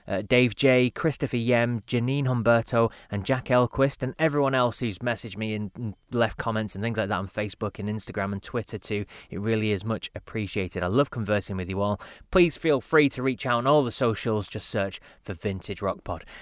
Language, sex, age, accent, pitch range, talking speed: English, male, 20-39, British, 105-135 Hz, 210 wpm